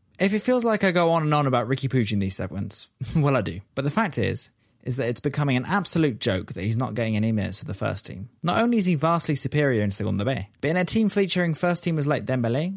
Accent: British